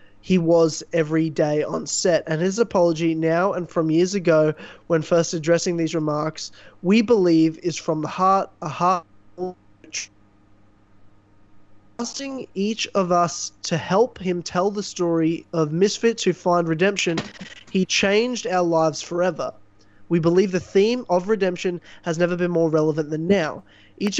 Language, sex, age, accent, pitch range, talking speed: English, male, 20-39, Australian, 160-200 Hz, 150 wpm